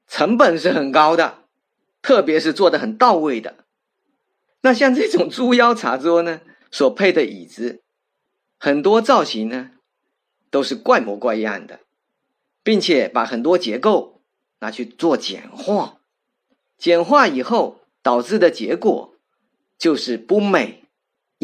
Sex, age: male, 50-69